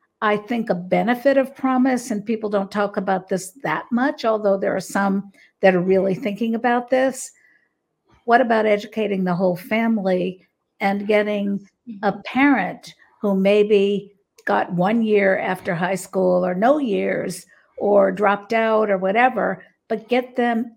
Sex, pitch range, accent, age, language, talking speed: female, 195-230 Hz, American, 50-69, English, 155 wpm